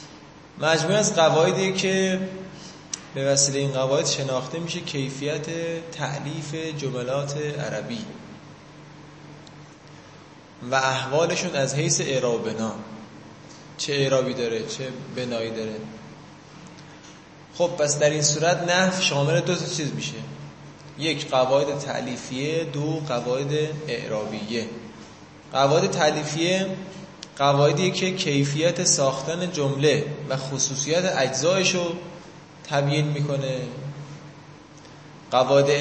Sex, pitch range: male, 135-165 Hz